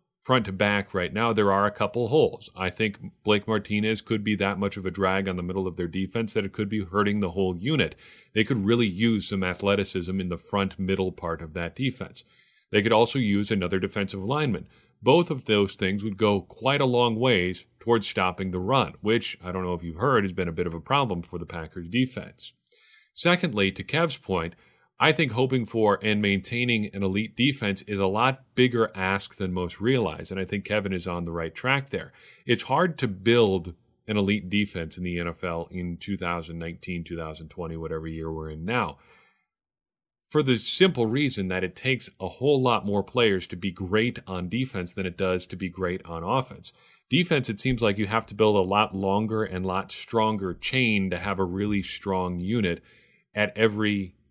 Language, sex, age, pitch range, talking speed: English, male, 40-59, 90-115 Hz, 205 wpm